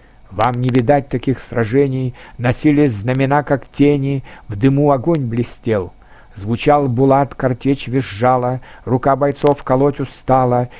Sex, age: male, 60-79